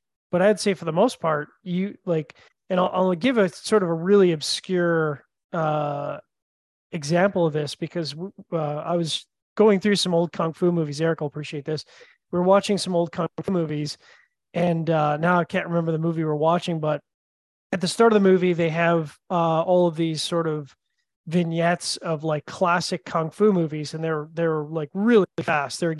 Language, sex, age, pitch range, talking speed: English, male, 30-49, 160-195 Hz, 195 wpm